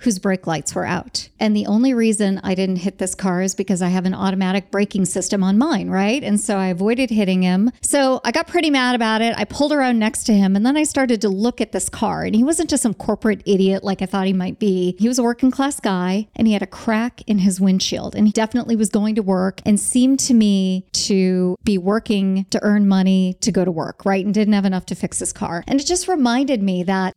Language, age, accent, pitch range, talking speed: English, 40-59, American, 195-245 Hz, 255 wpm